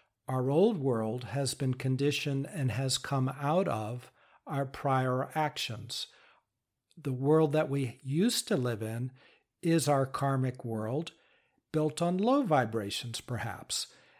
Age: 60-79